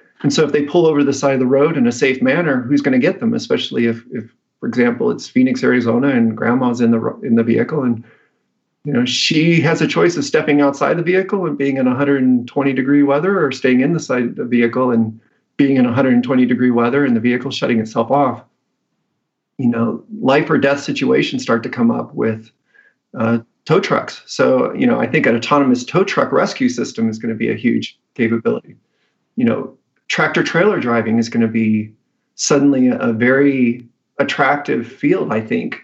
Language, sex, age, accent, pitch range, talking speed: English, male, 40-59, American, 115-145 Hz, 205 wpm